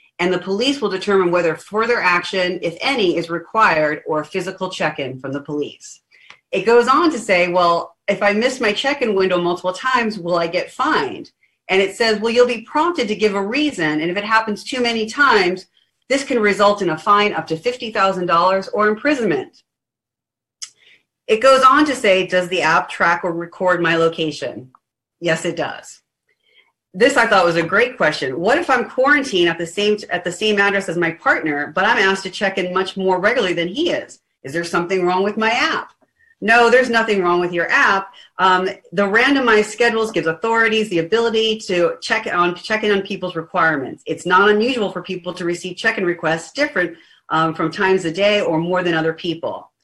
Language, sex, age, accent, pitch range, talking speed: English, female, 40-59, American, 175-225 Hz, 200 wpm